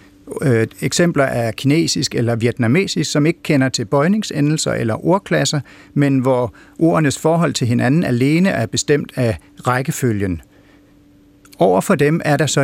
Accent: native